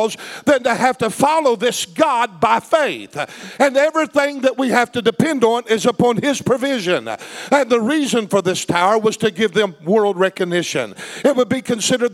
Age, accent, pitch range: 50-69, American, 205-260 Hz